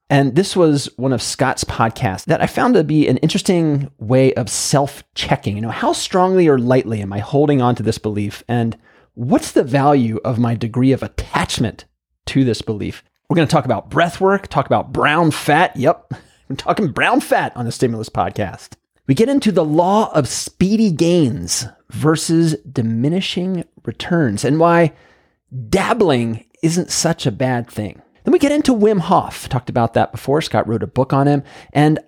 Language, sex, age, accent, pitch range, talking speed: English, male, 30-49, American, 110-160 Hz, 180 wpm